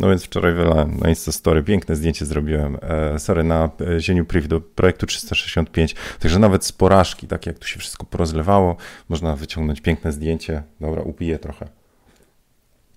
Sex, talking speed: male, 160 wpm